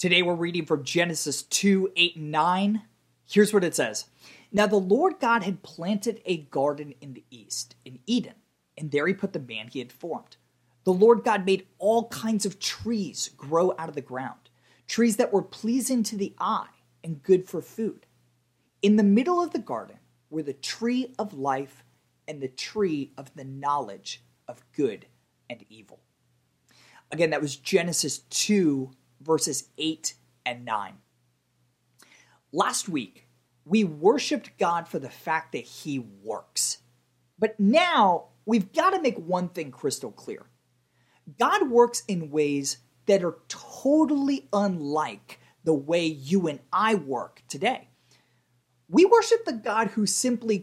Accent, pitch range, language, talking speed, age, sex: American, 135-210 Hz, English, 155 wpm, 30-49, male